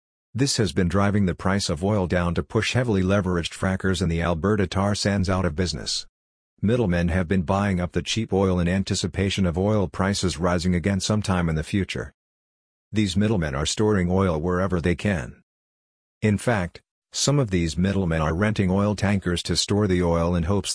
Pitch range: 90-105 Hz